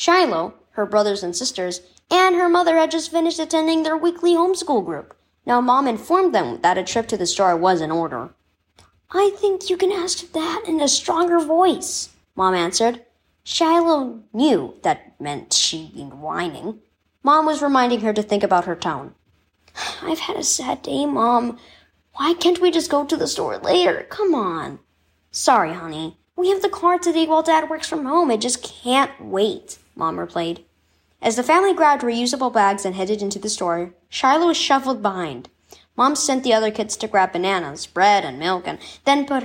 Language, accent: English, American